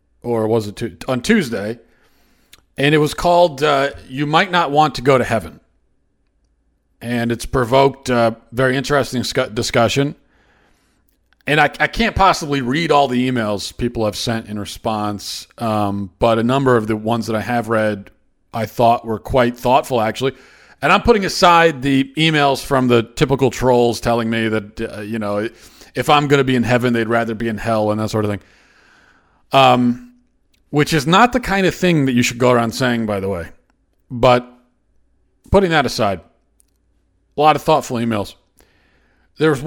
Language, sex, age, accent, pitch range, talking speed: English, male, 40-59, American, 105-135 Hz, 180 wpm